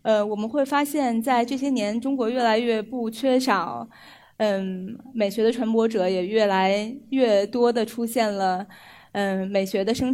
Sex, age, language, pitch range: female, 20-39, Chinese, 210-255 Hz